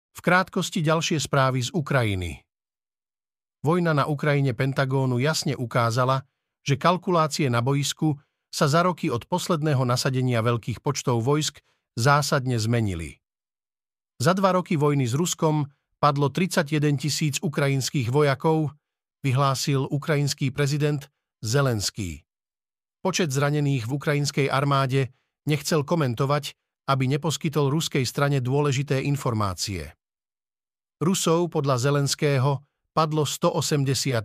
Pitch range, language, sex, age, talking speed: 130-160 Hz, Slovak, male, 50-69, 105 wpm